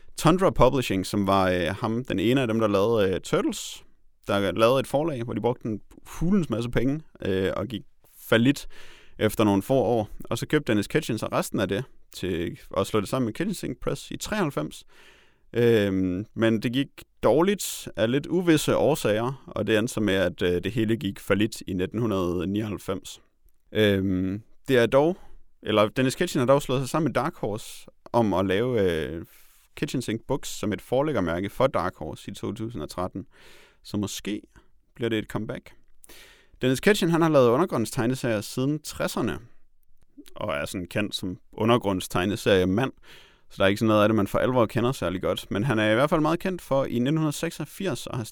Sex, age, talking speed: male, 30-49, 185 wpm